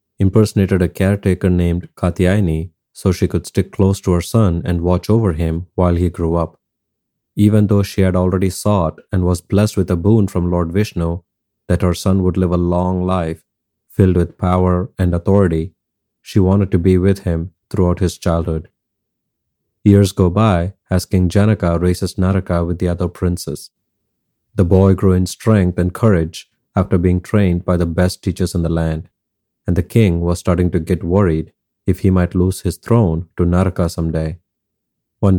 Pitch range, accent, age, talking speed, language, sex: 85-100 Hz, Indian, 30-49, 180 wpm, English, male